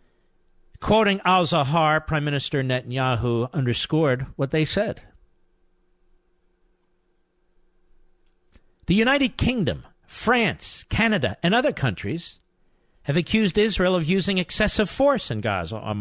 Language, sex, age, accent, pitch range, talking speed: English, male, 50-69, American, 125-180 Hz, 100 wpm